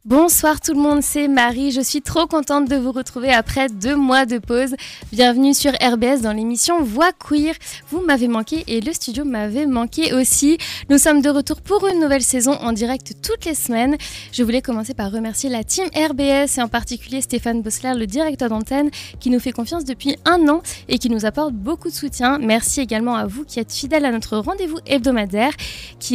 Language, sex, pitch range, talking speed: French, female, 230-290 Hz, 205 wpm